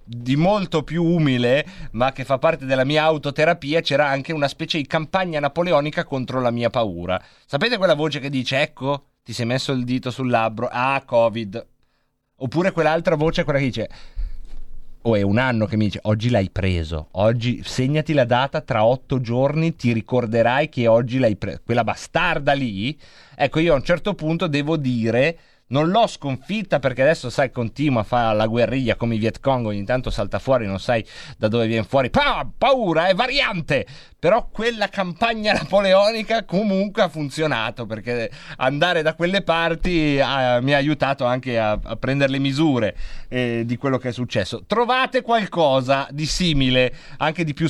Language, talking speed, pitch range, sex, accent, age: Italian, 175 wpm, 115-160 Hz, male, native, 30-49